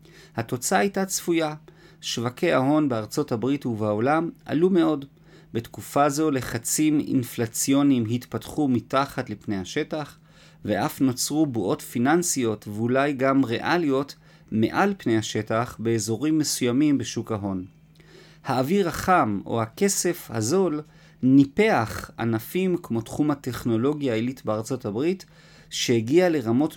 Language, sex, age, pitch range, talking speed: Hebrew, male, 40-59, 115-165 Hz, 105 wpm